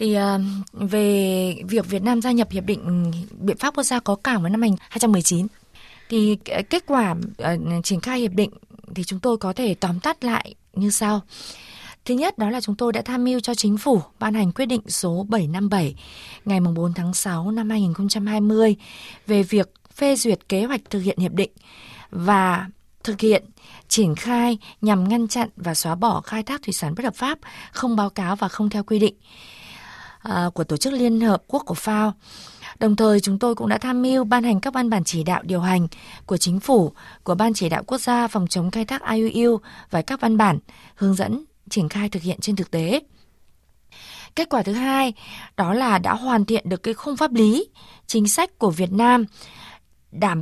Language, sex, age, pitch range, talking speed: Vietnamese, female, 20-39, 190-235 Hz, 200 wpm